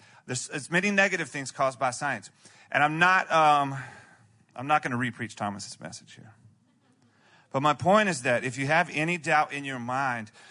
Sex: male